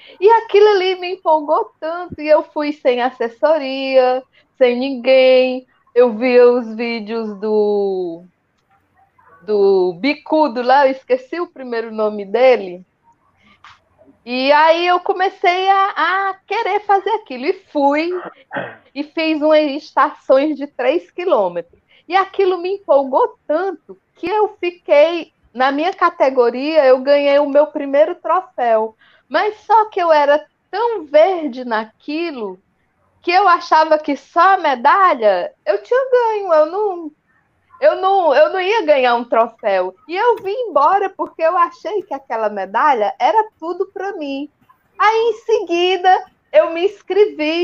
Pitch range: 260-365 Hz